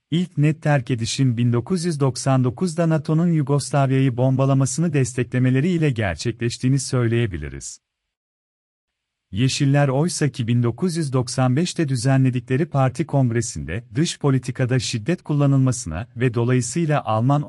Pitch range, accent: 125-150 Hz, native